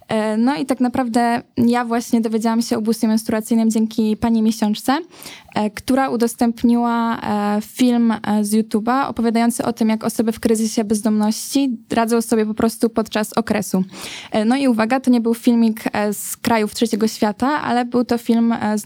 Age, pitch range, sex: 10-29, 220-240 Hz, female